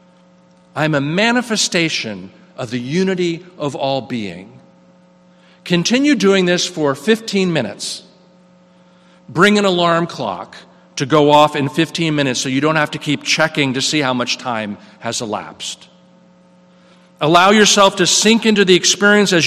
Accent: American